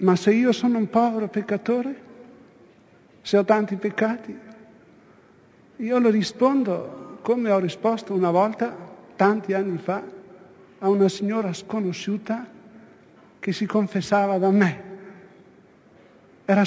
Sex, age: male, 60-79